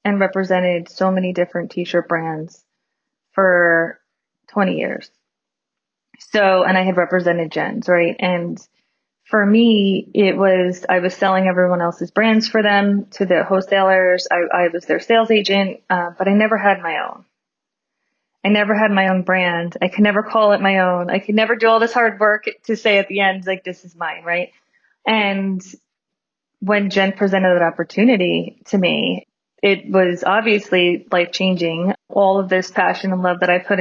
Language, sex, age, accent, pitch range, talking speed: English, female, 20-39, American, 180-210 Hz, 175 wpm